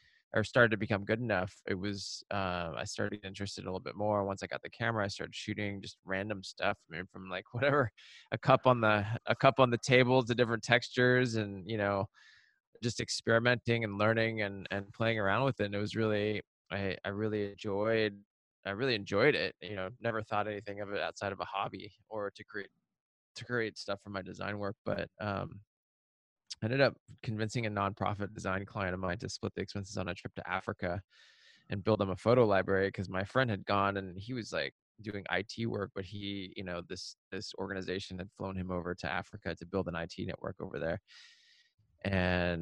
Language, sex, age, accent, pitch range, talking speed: English, male, 20-39, American, 95-115 Hz, 210 wpm